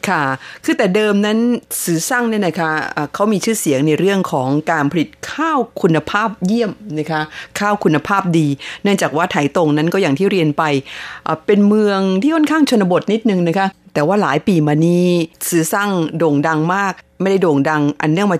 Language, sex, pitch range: Thai, female, 155-205 Hz